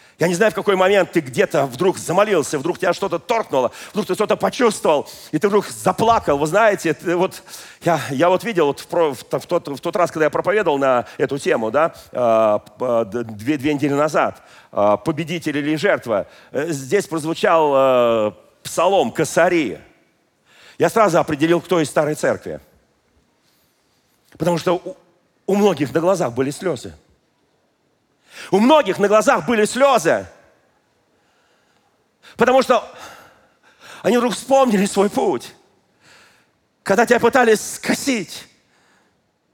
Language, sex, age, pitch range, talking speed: Russian, male, 40-59, 150-215 Hz, 125 wpm